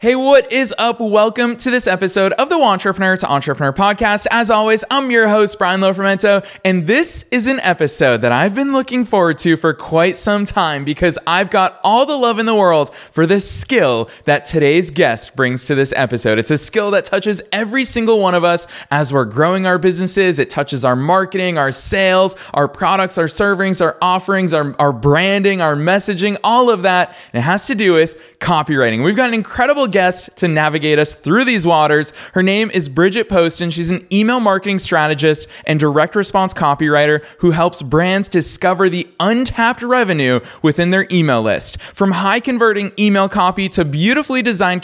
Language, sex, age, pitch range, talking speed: English, male, 20-39, 155-205 Hz, 190 wpm